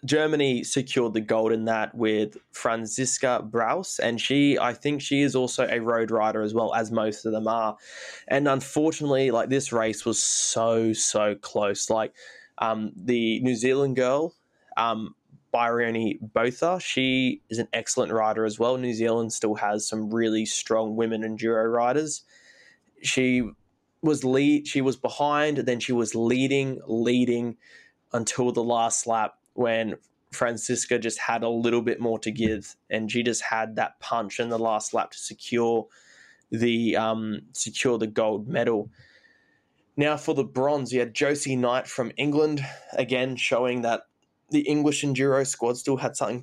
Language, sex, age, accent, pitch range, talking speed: English, male, 20-39, Australian, 110-130 Hz, 160 wpm